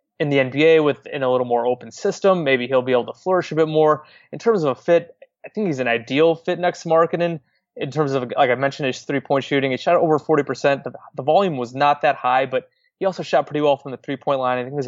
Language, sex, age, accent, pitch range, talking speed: English, male, 20-39, American, 130-160 Hz, 260 wpm